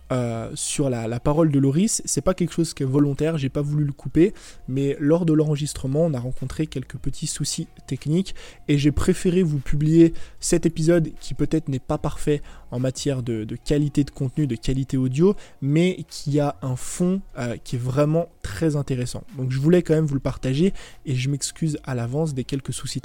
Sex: male